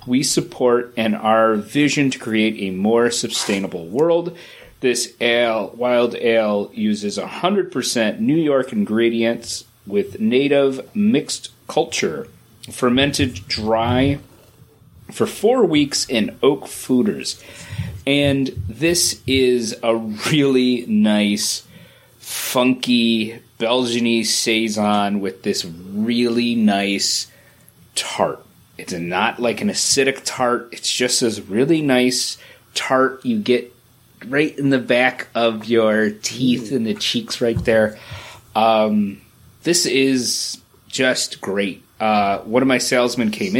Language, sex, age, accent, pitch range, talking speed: English, male, 30-49, American, 110-135 Hz, 115 wpm